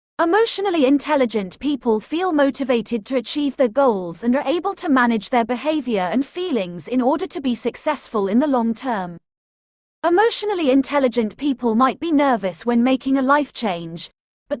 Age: 30-49